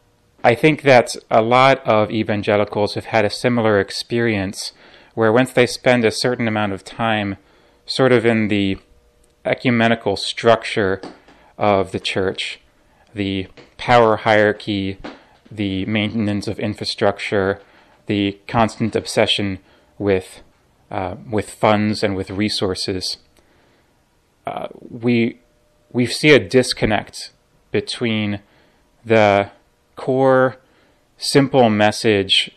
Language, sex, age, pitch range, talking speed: English, male, 30-49, 100-120 Hz, 105 wpm